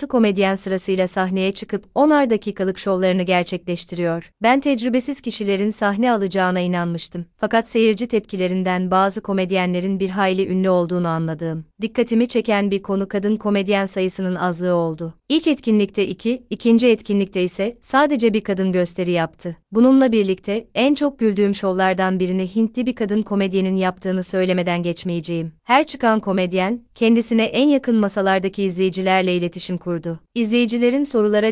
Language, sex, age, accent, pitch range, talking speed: Turkish, female, 30-49, native, 185-225 Hz, 135 wpm